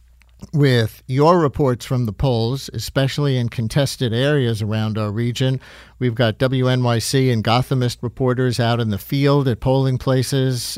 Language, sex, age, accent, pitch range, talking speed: English, male, 50-69, American, 110-135 Hz, 145 wpm